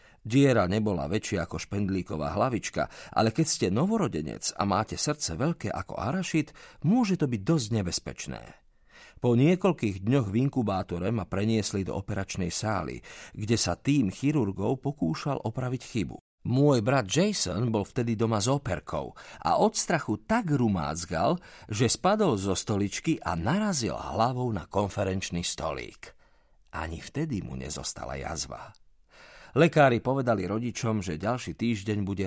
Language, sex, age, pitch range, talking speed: Slovak, male, 50-69, 90-125 Hz, 135 wpm